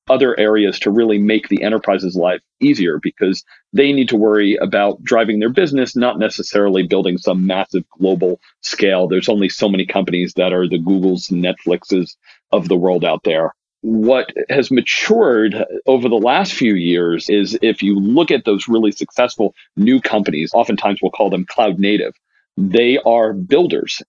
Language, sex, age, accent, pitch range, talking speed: English, male, 40-59, American, 100-125 Hz, 165 wpm